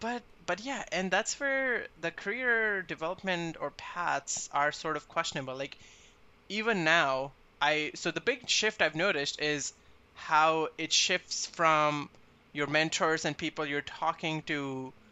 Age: 20-39